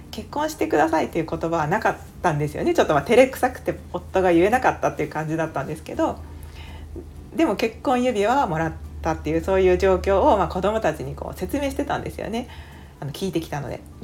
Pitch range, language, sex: 170-270 Hz, Japanese, female